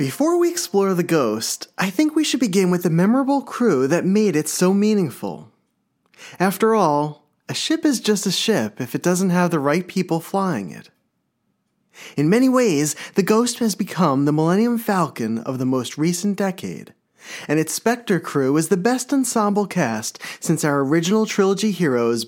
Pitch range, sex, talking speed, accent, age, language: 150-210 Hz, male, 175 wpm, American, 30-49, English